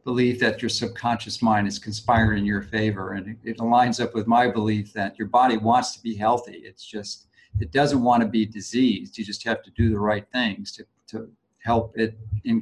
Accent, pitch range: American, 105-120 Hz